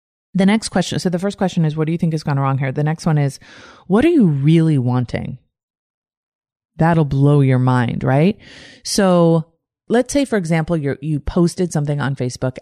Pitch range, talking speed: 140-195 Hz, 190 wpm